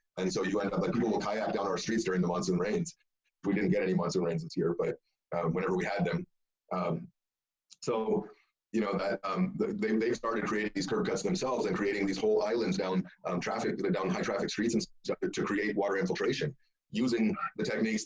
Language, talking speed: English, 215 wpm